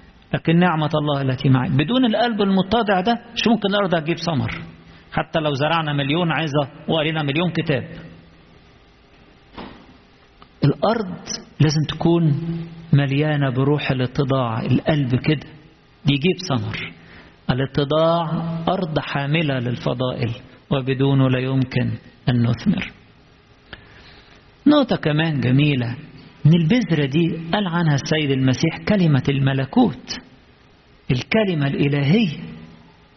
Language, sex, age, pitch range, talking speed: English, male, 50-69, 135-190 Hz, 100 wpm